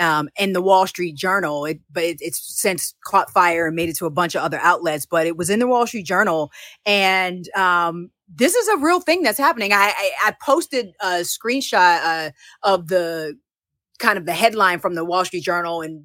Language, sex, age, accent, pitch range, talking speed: English, female, 30-49, American, 175-235 Hz, 215 wpm